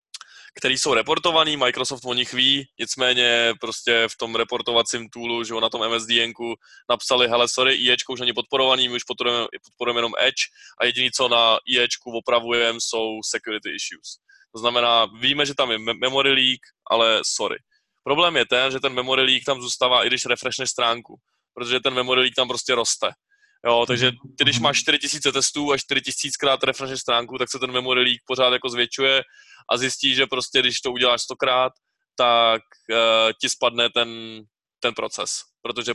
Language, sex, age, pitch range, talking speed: Czech, male, 20-39, 120-135 Hz, 175 wpm